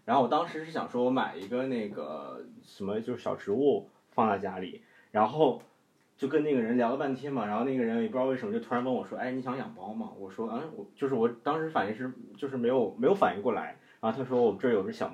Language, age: Chinese, 20-39